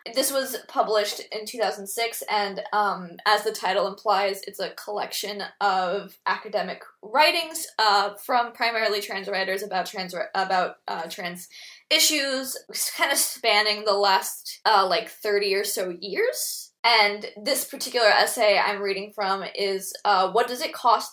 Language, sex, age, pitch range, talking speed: English, female, 10-29, 200-250 Hz, 150 wpm